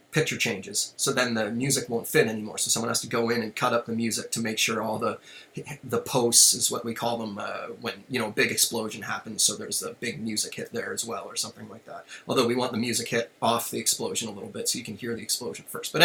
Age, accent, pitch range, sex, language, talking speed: 30-49, American, 115-140 Hz, male, English, 275 wpm